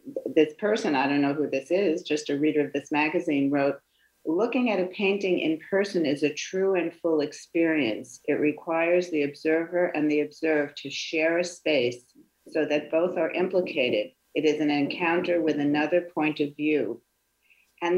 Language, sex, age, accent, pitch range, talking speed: English, female, 50-69, American, 150-180 Hz, 175 wpm